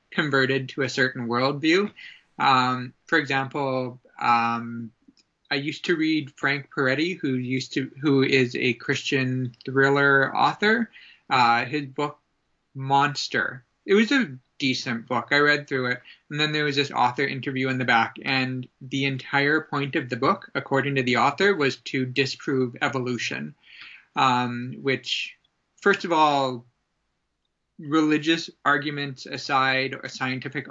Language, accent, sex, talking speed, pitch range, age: English, American, male, 140 wpm, 130-150 Hz, 20-39